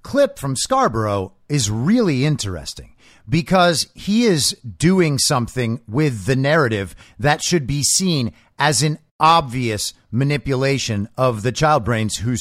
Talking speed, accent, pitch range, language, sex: 130 wpm, American, 120-175 Hz, English, male